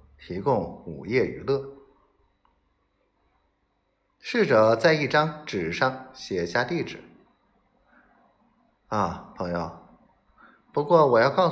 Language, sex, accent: Chinese, male, native